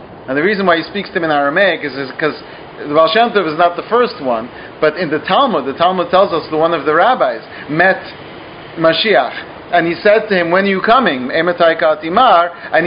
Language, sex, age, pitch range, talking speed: English, male, 40-59, 165-210 Hz, 205 wpm